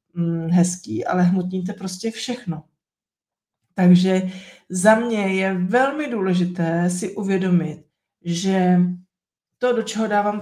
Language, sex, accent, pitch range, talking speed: Czech, female, native, 185-225 Hz, 105 wpm